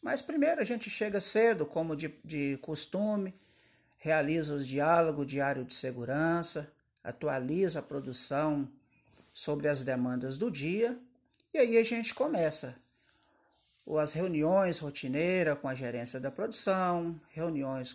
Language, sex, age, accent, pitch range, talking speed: Portuguese, male, 50-69, Brazilian, 140-210 Hz, 125 wpm